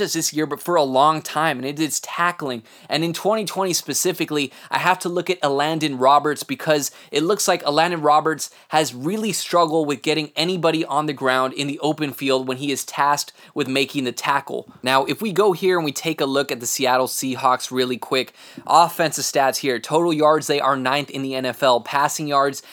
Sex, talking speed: male, 205 wpm